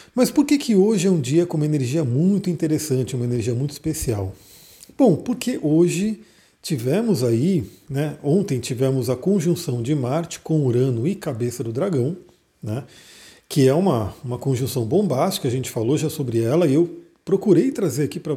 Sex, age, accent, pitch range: male, 40-59, Brazilian, 130-175 Hz